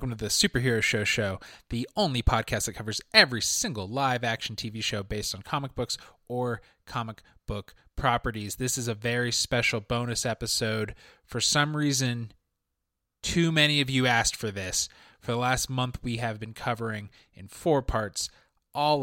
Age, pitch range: 20-39, 105-125 Hz